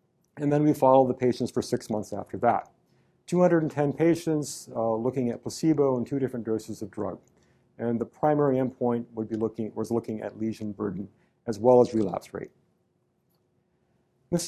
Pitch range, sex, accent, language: 110-150 Hz, male, American, English